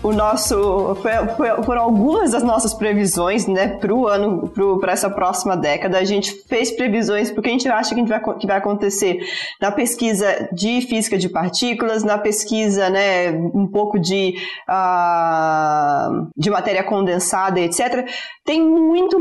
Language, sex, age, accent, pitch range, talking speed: Portuguese, female, 20-39, Brazilian, 195-240 Hz, 150 wpm